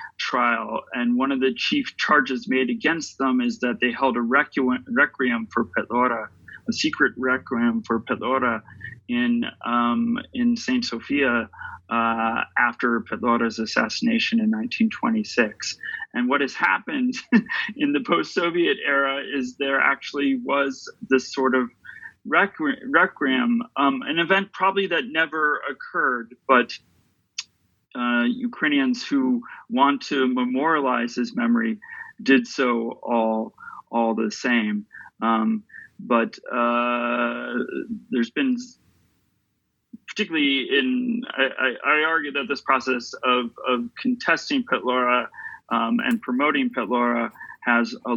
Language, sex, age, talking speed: English, male, 30-49, 120 wpm